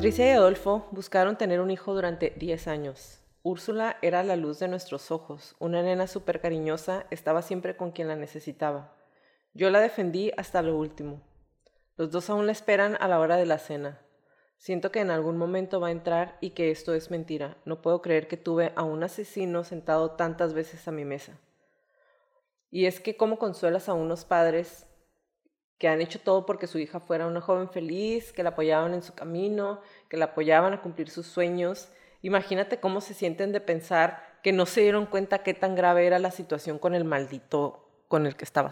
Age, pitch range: 30-49, 160-205 Hz